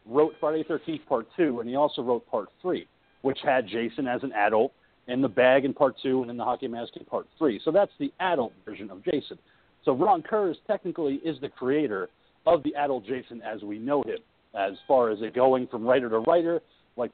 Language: English